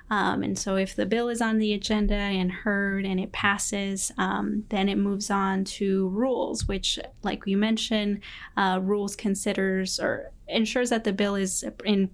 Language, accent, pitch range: English, American, 190-215 Hz